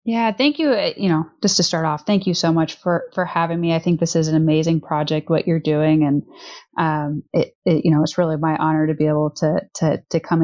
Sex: female